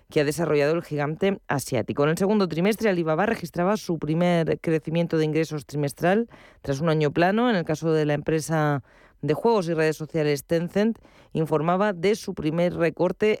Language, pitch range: Spanish, 150-180 Hz